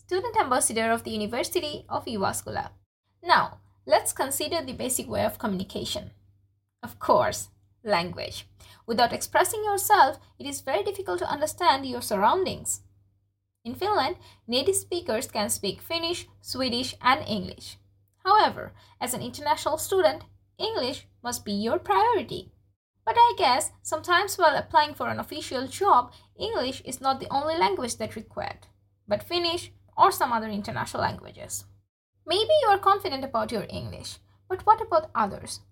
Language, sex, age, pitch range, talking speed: Finnish, female, 10-29, 200-335 Hz, 145 wpm